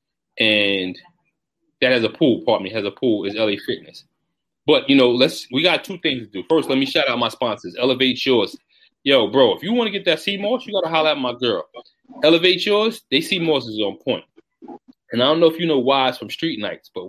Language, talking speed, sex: English, 230 wpm, male